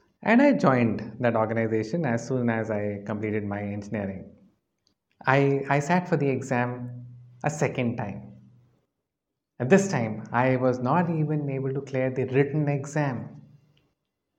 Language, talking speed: English, 140 wpm